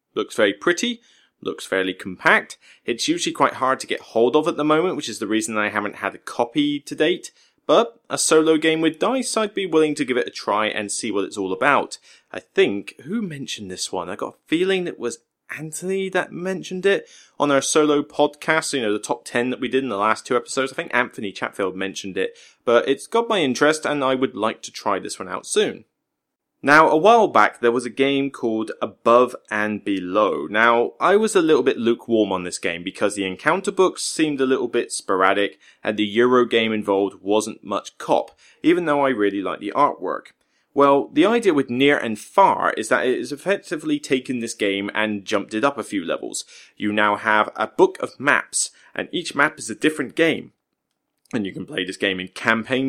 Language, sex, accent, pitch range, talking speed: English, male, British, 105-155 Hz, 220 wpm